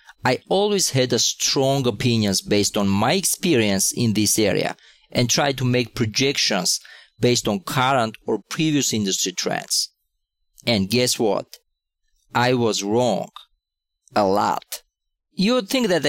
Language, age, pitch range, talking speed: English, 40-59, 110-155 Hz, 140 wpm